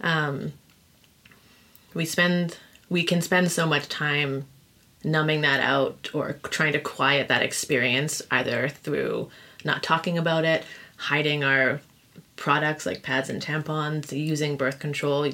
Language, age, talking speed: English, 20-39, 135 wpm